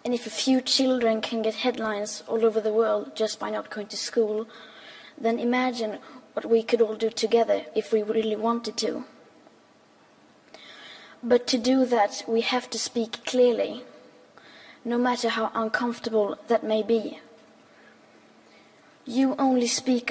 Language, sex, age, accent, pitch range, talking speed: English, female, 20-39, Norwegian, 220-240 Hz, 150 wpm